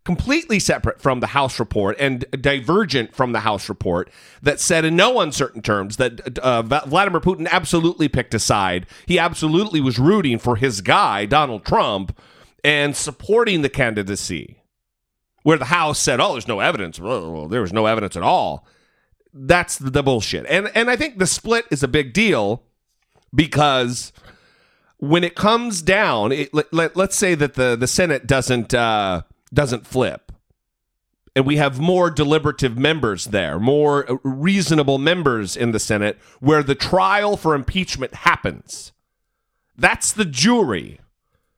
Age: 40-59